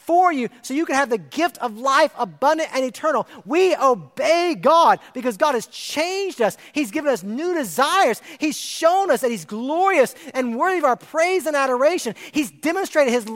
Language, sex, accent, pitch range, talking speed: English, male, American, 185-300 Hz, 185 wpm